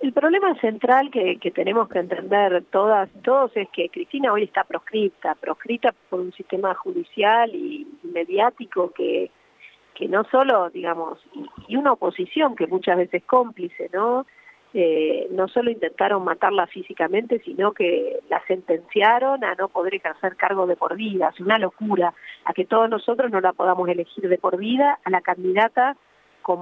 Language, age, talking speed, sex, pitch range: Spanish, 40-59, 160 wpm, female, 185-255 Hz